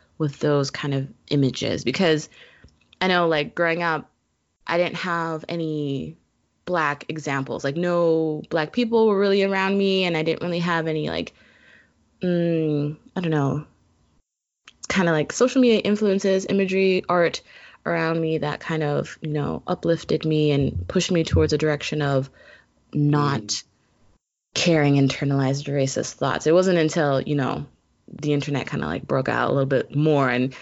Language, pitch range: English, 140-175 Hz